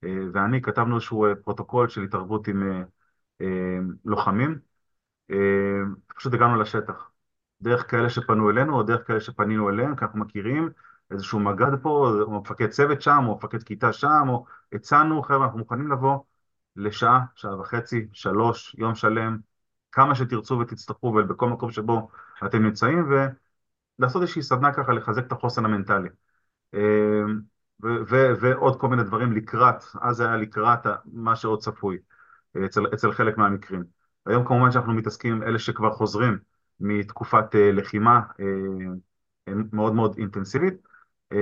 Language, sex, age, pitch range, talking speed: Hebrew, male, 30-49, 105-125 Hz, 140 wpm